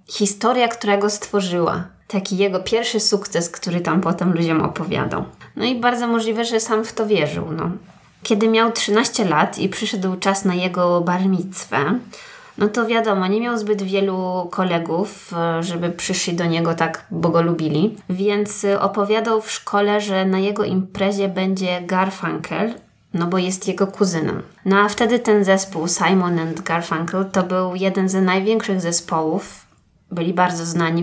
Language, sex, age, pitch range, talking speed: Polish, female, 20-39, 175-210 Hz, 155 wpm